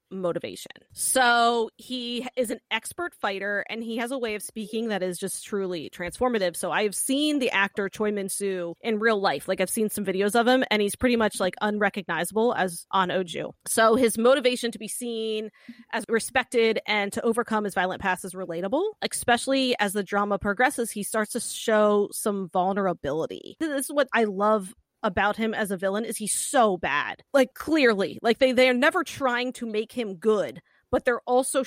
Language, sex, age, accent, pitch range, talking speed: English, female, 20-39, American, 200-240 Hz, 195 wpm